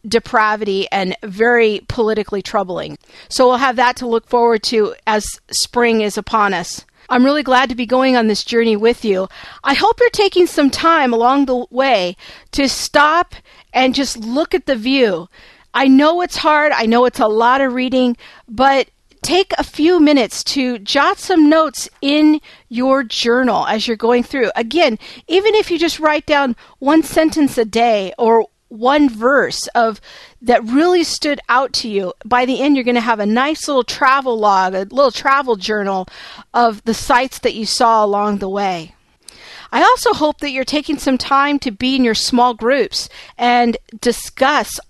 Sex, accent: female, American